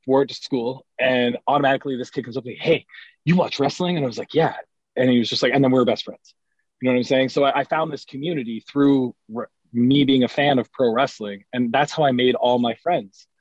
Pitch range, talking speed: 110-140 Hz, 265 wpm